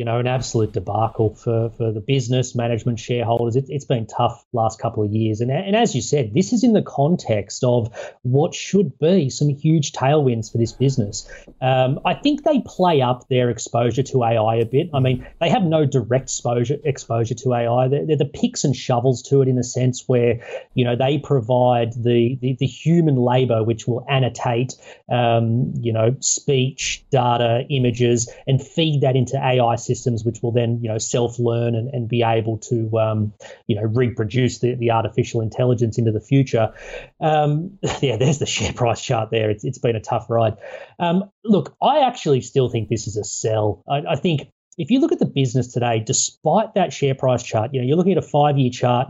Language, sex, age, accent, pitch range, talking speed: English, male, 30-49, Australian, 115-140 Hz, 205 wpm